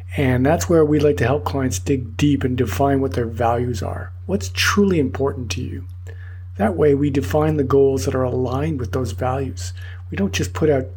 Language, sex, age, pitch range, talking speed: English, male, 50-69, 90-135 Hz, 210 wpm